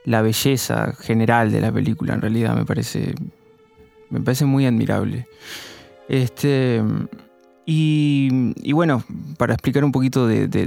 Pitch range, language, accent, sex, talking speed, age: 120-140 Hz, Spanish, Argentinian, male, 135 wpm, 20-39